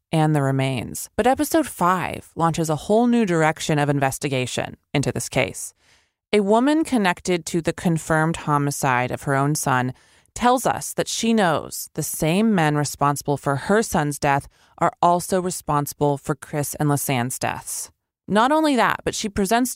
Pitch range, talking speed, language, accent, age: 140-190 Hz, 165 wpm, English, American, 20-39